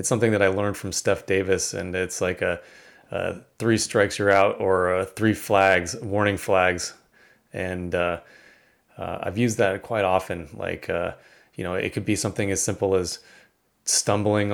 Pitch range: 95-110 Hz